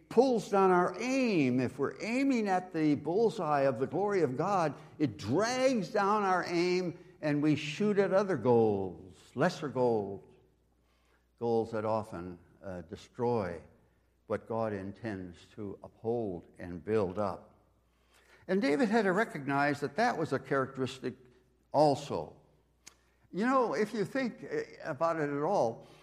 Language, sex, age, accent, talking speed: English, male, 60-79, American, 140 wpm